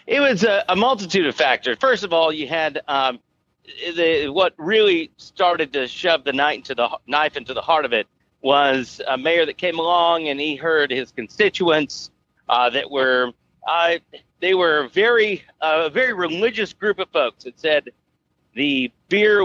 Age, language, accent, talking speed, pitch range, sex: 40-59, English, American, 180 wpm, 135-200 Hz, male